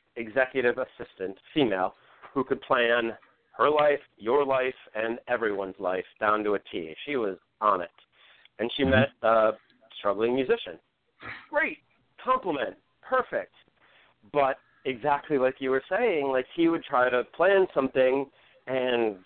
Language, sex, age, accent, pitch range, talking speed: English, male, 40-59, American, 115-150 Hz, 135 wpm